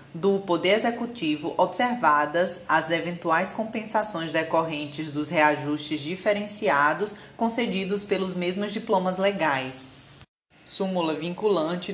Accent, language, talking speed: Brazilian, Portuguese, 90 wpm